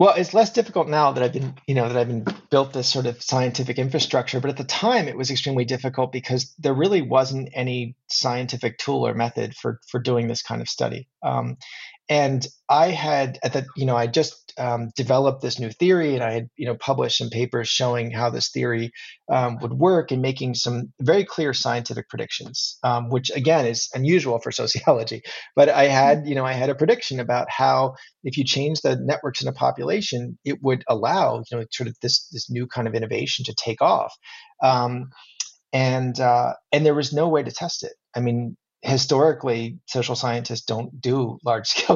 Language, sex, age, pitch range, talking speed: English, male, 30-49, 120-145 Hz, 200 wpm